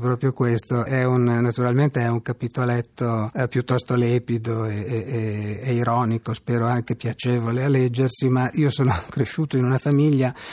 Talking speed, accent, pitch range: 155 wpm, native, 110-130 Hz